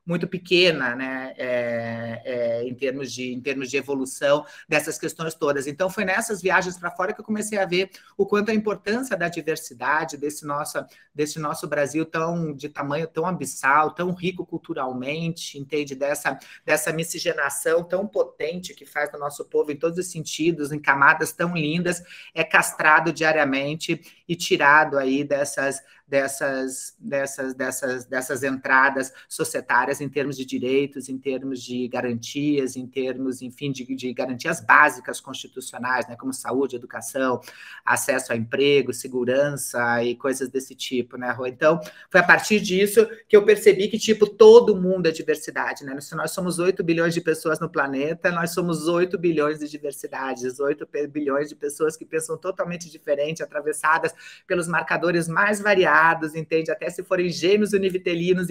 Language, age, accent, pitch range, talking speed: Portuguese, 30-49, Brazilian, 135-180 Hz, 160 wpm